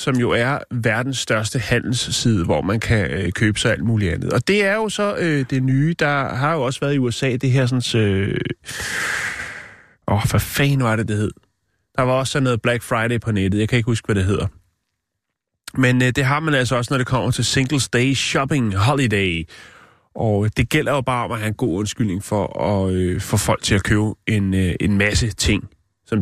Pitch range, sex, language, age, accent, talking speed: 100-130 Hz, male, Danish, 30-49, native, 225 wpm